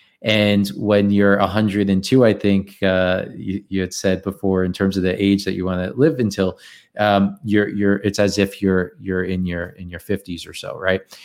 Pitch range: 95-115 Hz